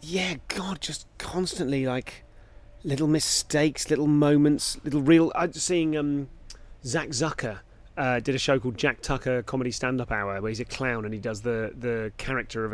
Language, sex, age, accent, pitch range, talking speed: English, male, 30-49, British, 115-145 Hz, 180 wpm